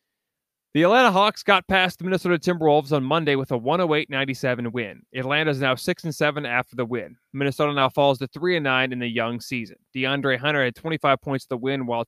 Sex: male